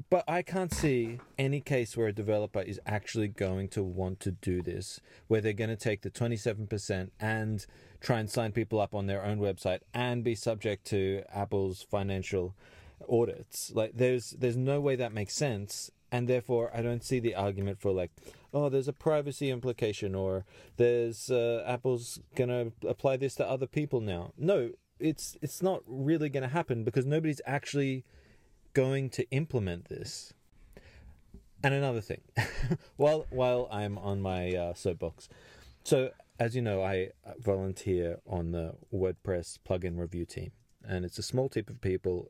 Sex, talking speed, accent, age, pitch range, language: male, 170 wpm, Australian, 30-49, 95-130 Hz, English